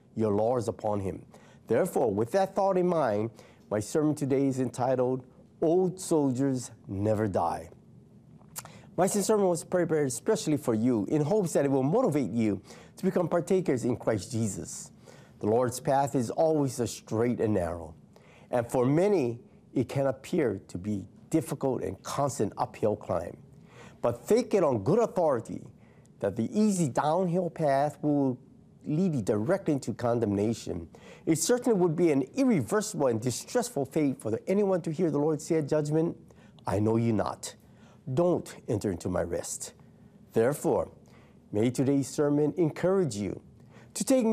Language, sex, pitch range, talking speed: English, male, 115-165 Hz, 155 wpm